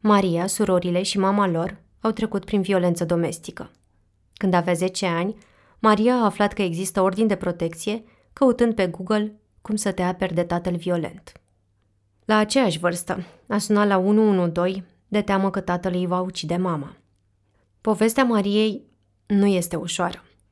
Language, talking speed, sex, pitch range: Romanian, 150 wpm, female, 175-200 Hz